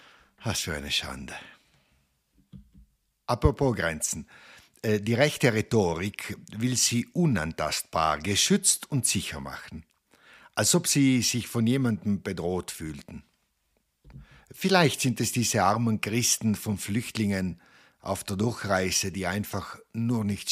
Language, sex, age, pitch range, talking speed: Italian, male, 60-79, 90-120 Hz, 115 wpm